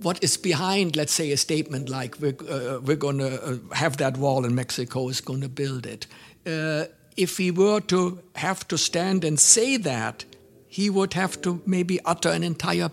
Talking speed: 190 wpm